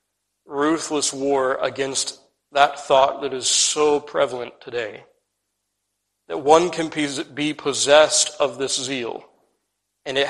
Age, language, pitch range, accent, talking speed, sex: 40-59, English, 105-150 Hz, American, 115 wpm, male